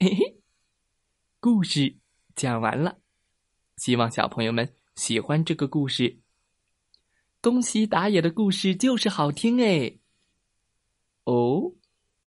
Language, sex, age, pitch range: Chinese, male, 20-39, 125-200 Hz